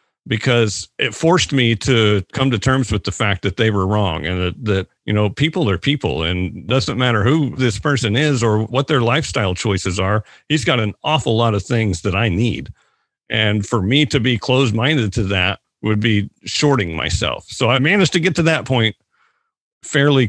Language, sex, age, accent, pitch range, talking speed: English, male, 40-59, American, 100-130 Hz, 200 wpm